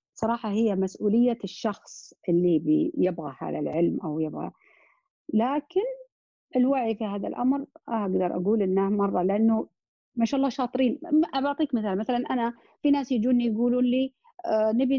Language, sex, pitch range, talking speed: Arabic, female, 200-275 Hz, 140 wpm